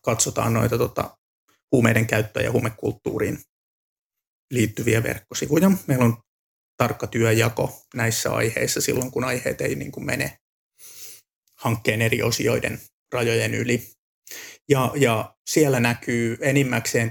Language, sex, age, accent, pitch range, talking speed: Finnish, male, 30-49, native, 115-130 Hz, 110 wpm